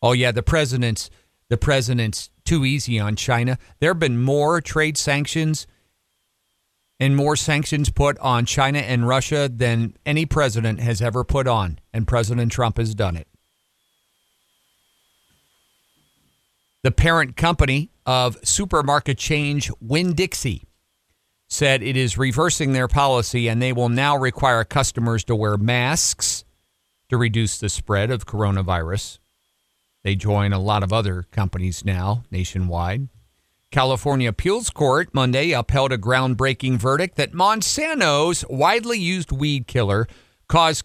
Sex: male